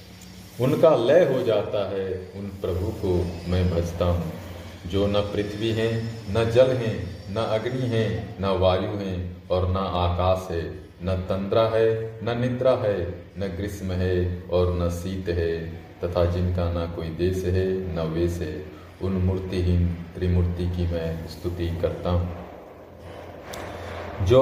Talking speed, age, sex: 145 wpm, 40-59, male